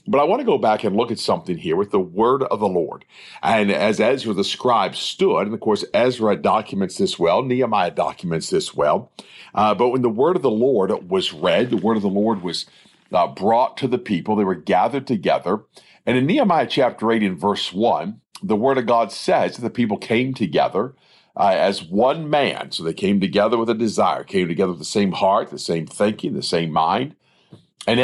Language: English